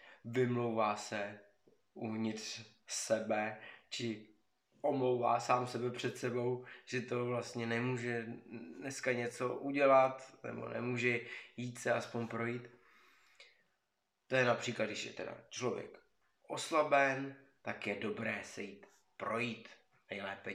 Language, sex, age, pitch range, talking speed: Czech, male, 20-39, 105-120 Hz, 110 wpm